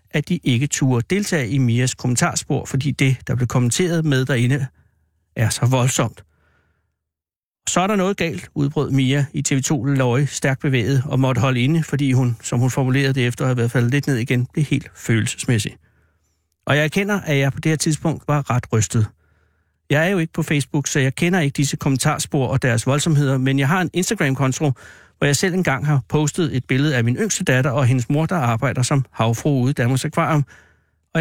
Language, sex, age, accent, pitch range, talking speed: Danish, male, 60-79, native, 120-155 Hz, 210 wpm